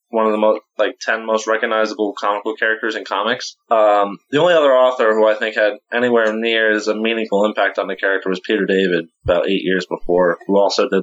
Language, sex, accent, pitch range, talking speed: English, male, American, 105-130 Hz, 220 wpm